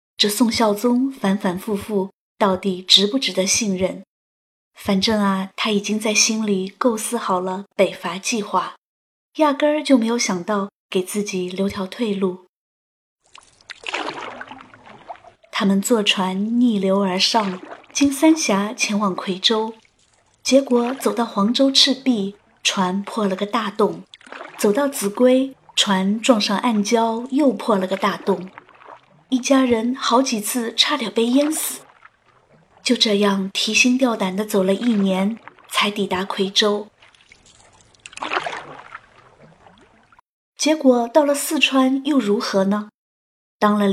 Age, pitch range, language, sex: 20-39, 195-245 Hz, Chinese, female